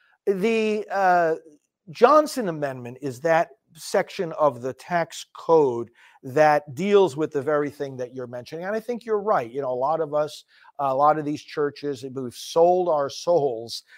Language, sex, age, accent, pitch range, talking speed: English, male, 50-69, American, 140-190 Hz, 170 wpm